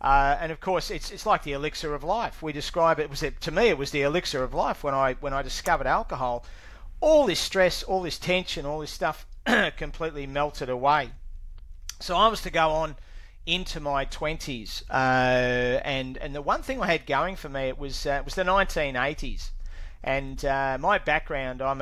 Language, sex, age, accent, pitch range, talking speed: English, male, 40-59, Australian, 130-160 Hz, 205 wpm